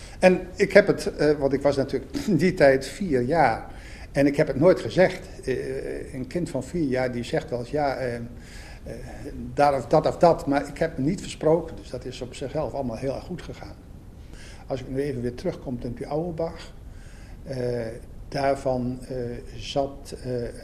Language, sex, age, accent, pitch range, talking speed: Dutch, male, 60-79, Dutch, 120-145 Hz, 180 wpm